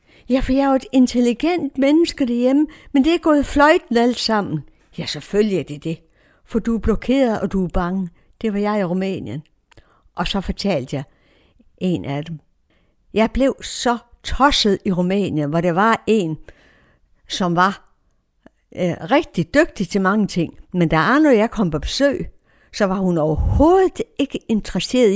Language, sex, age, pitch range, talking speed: Danish, female, 60-79, 175-240 Hz, 170 wpm